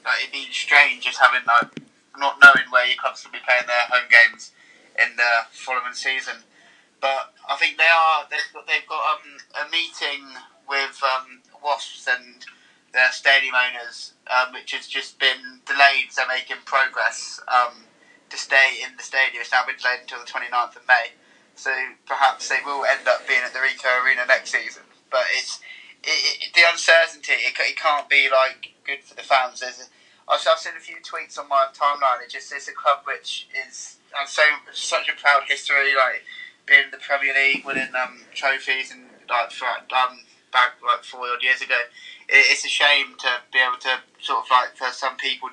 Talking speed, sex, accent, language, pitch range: 195 wpm, male, British, English, 125-150 Hz